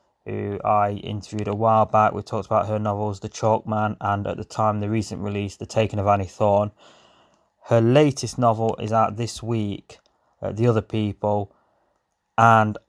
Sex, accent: male, British